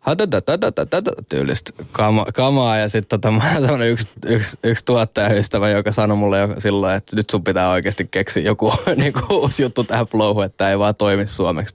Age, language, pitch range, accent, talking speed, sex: 10-29, Finnish, 95-110 Hz, native, 180 wpm, male